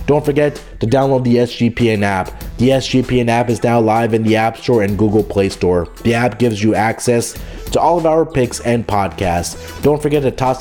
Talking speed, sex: 210 wpm, male